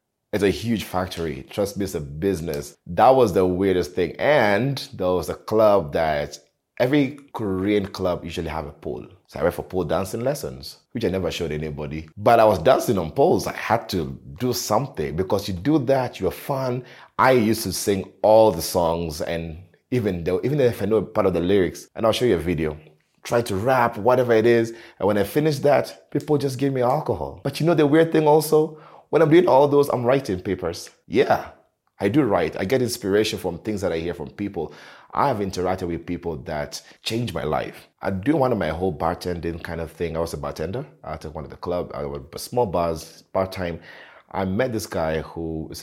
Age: 30-49